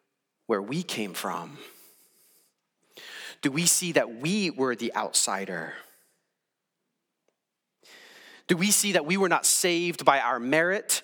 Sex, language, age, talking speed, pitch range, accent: male, English, 30-49, 125 wpm, 130-185 Hz, American